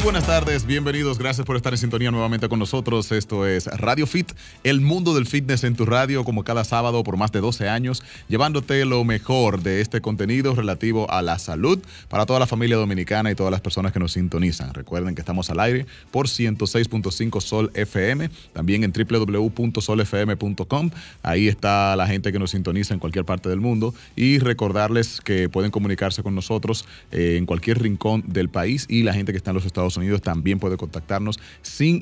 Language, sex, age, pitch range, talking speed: Spanish, male, 30-49, 95-120 Hz, 190 wpm